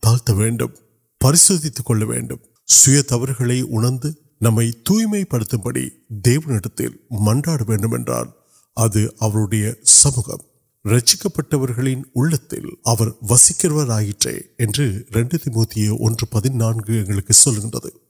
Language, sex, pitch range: Urdu, male, 110-145 Hz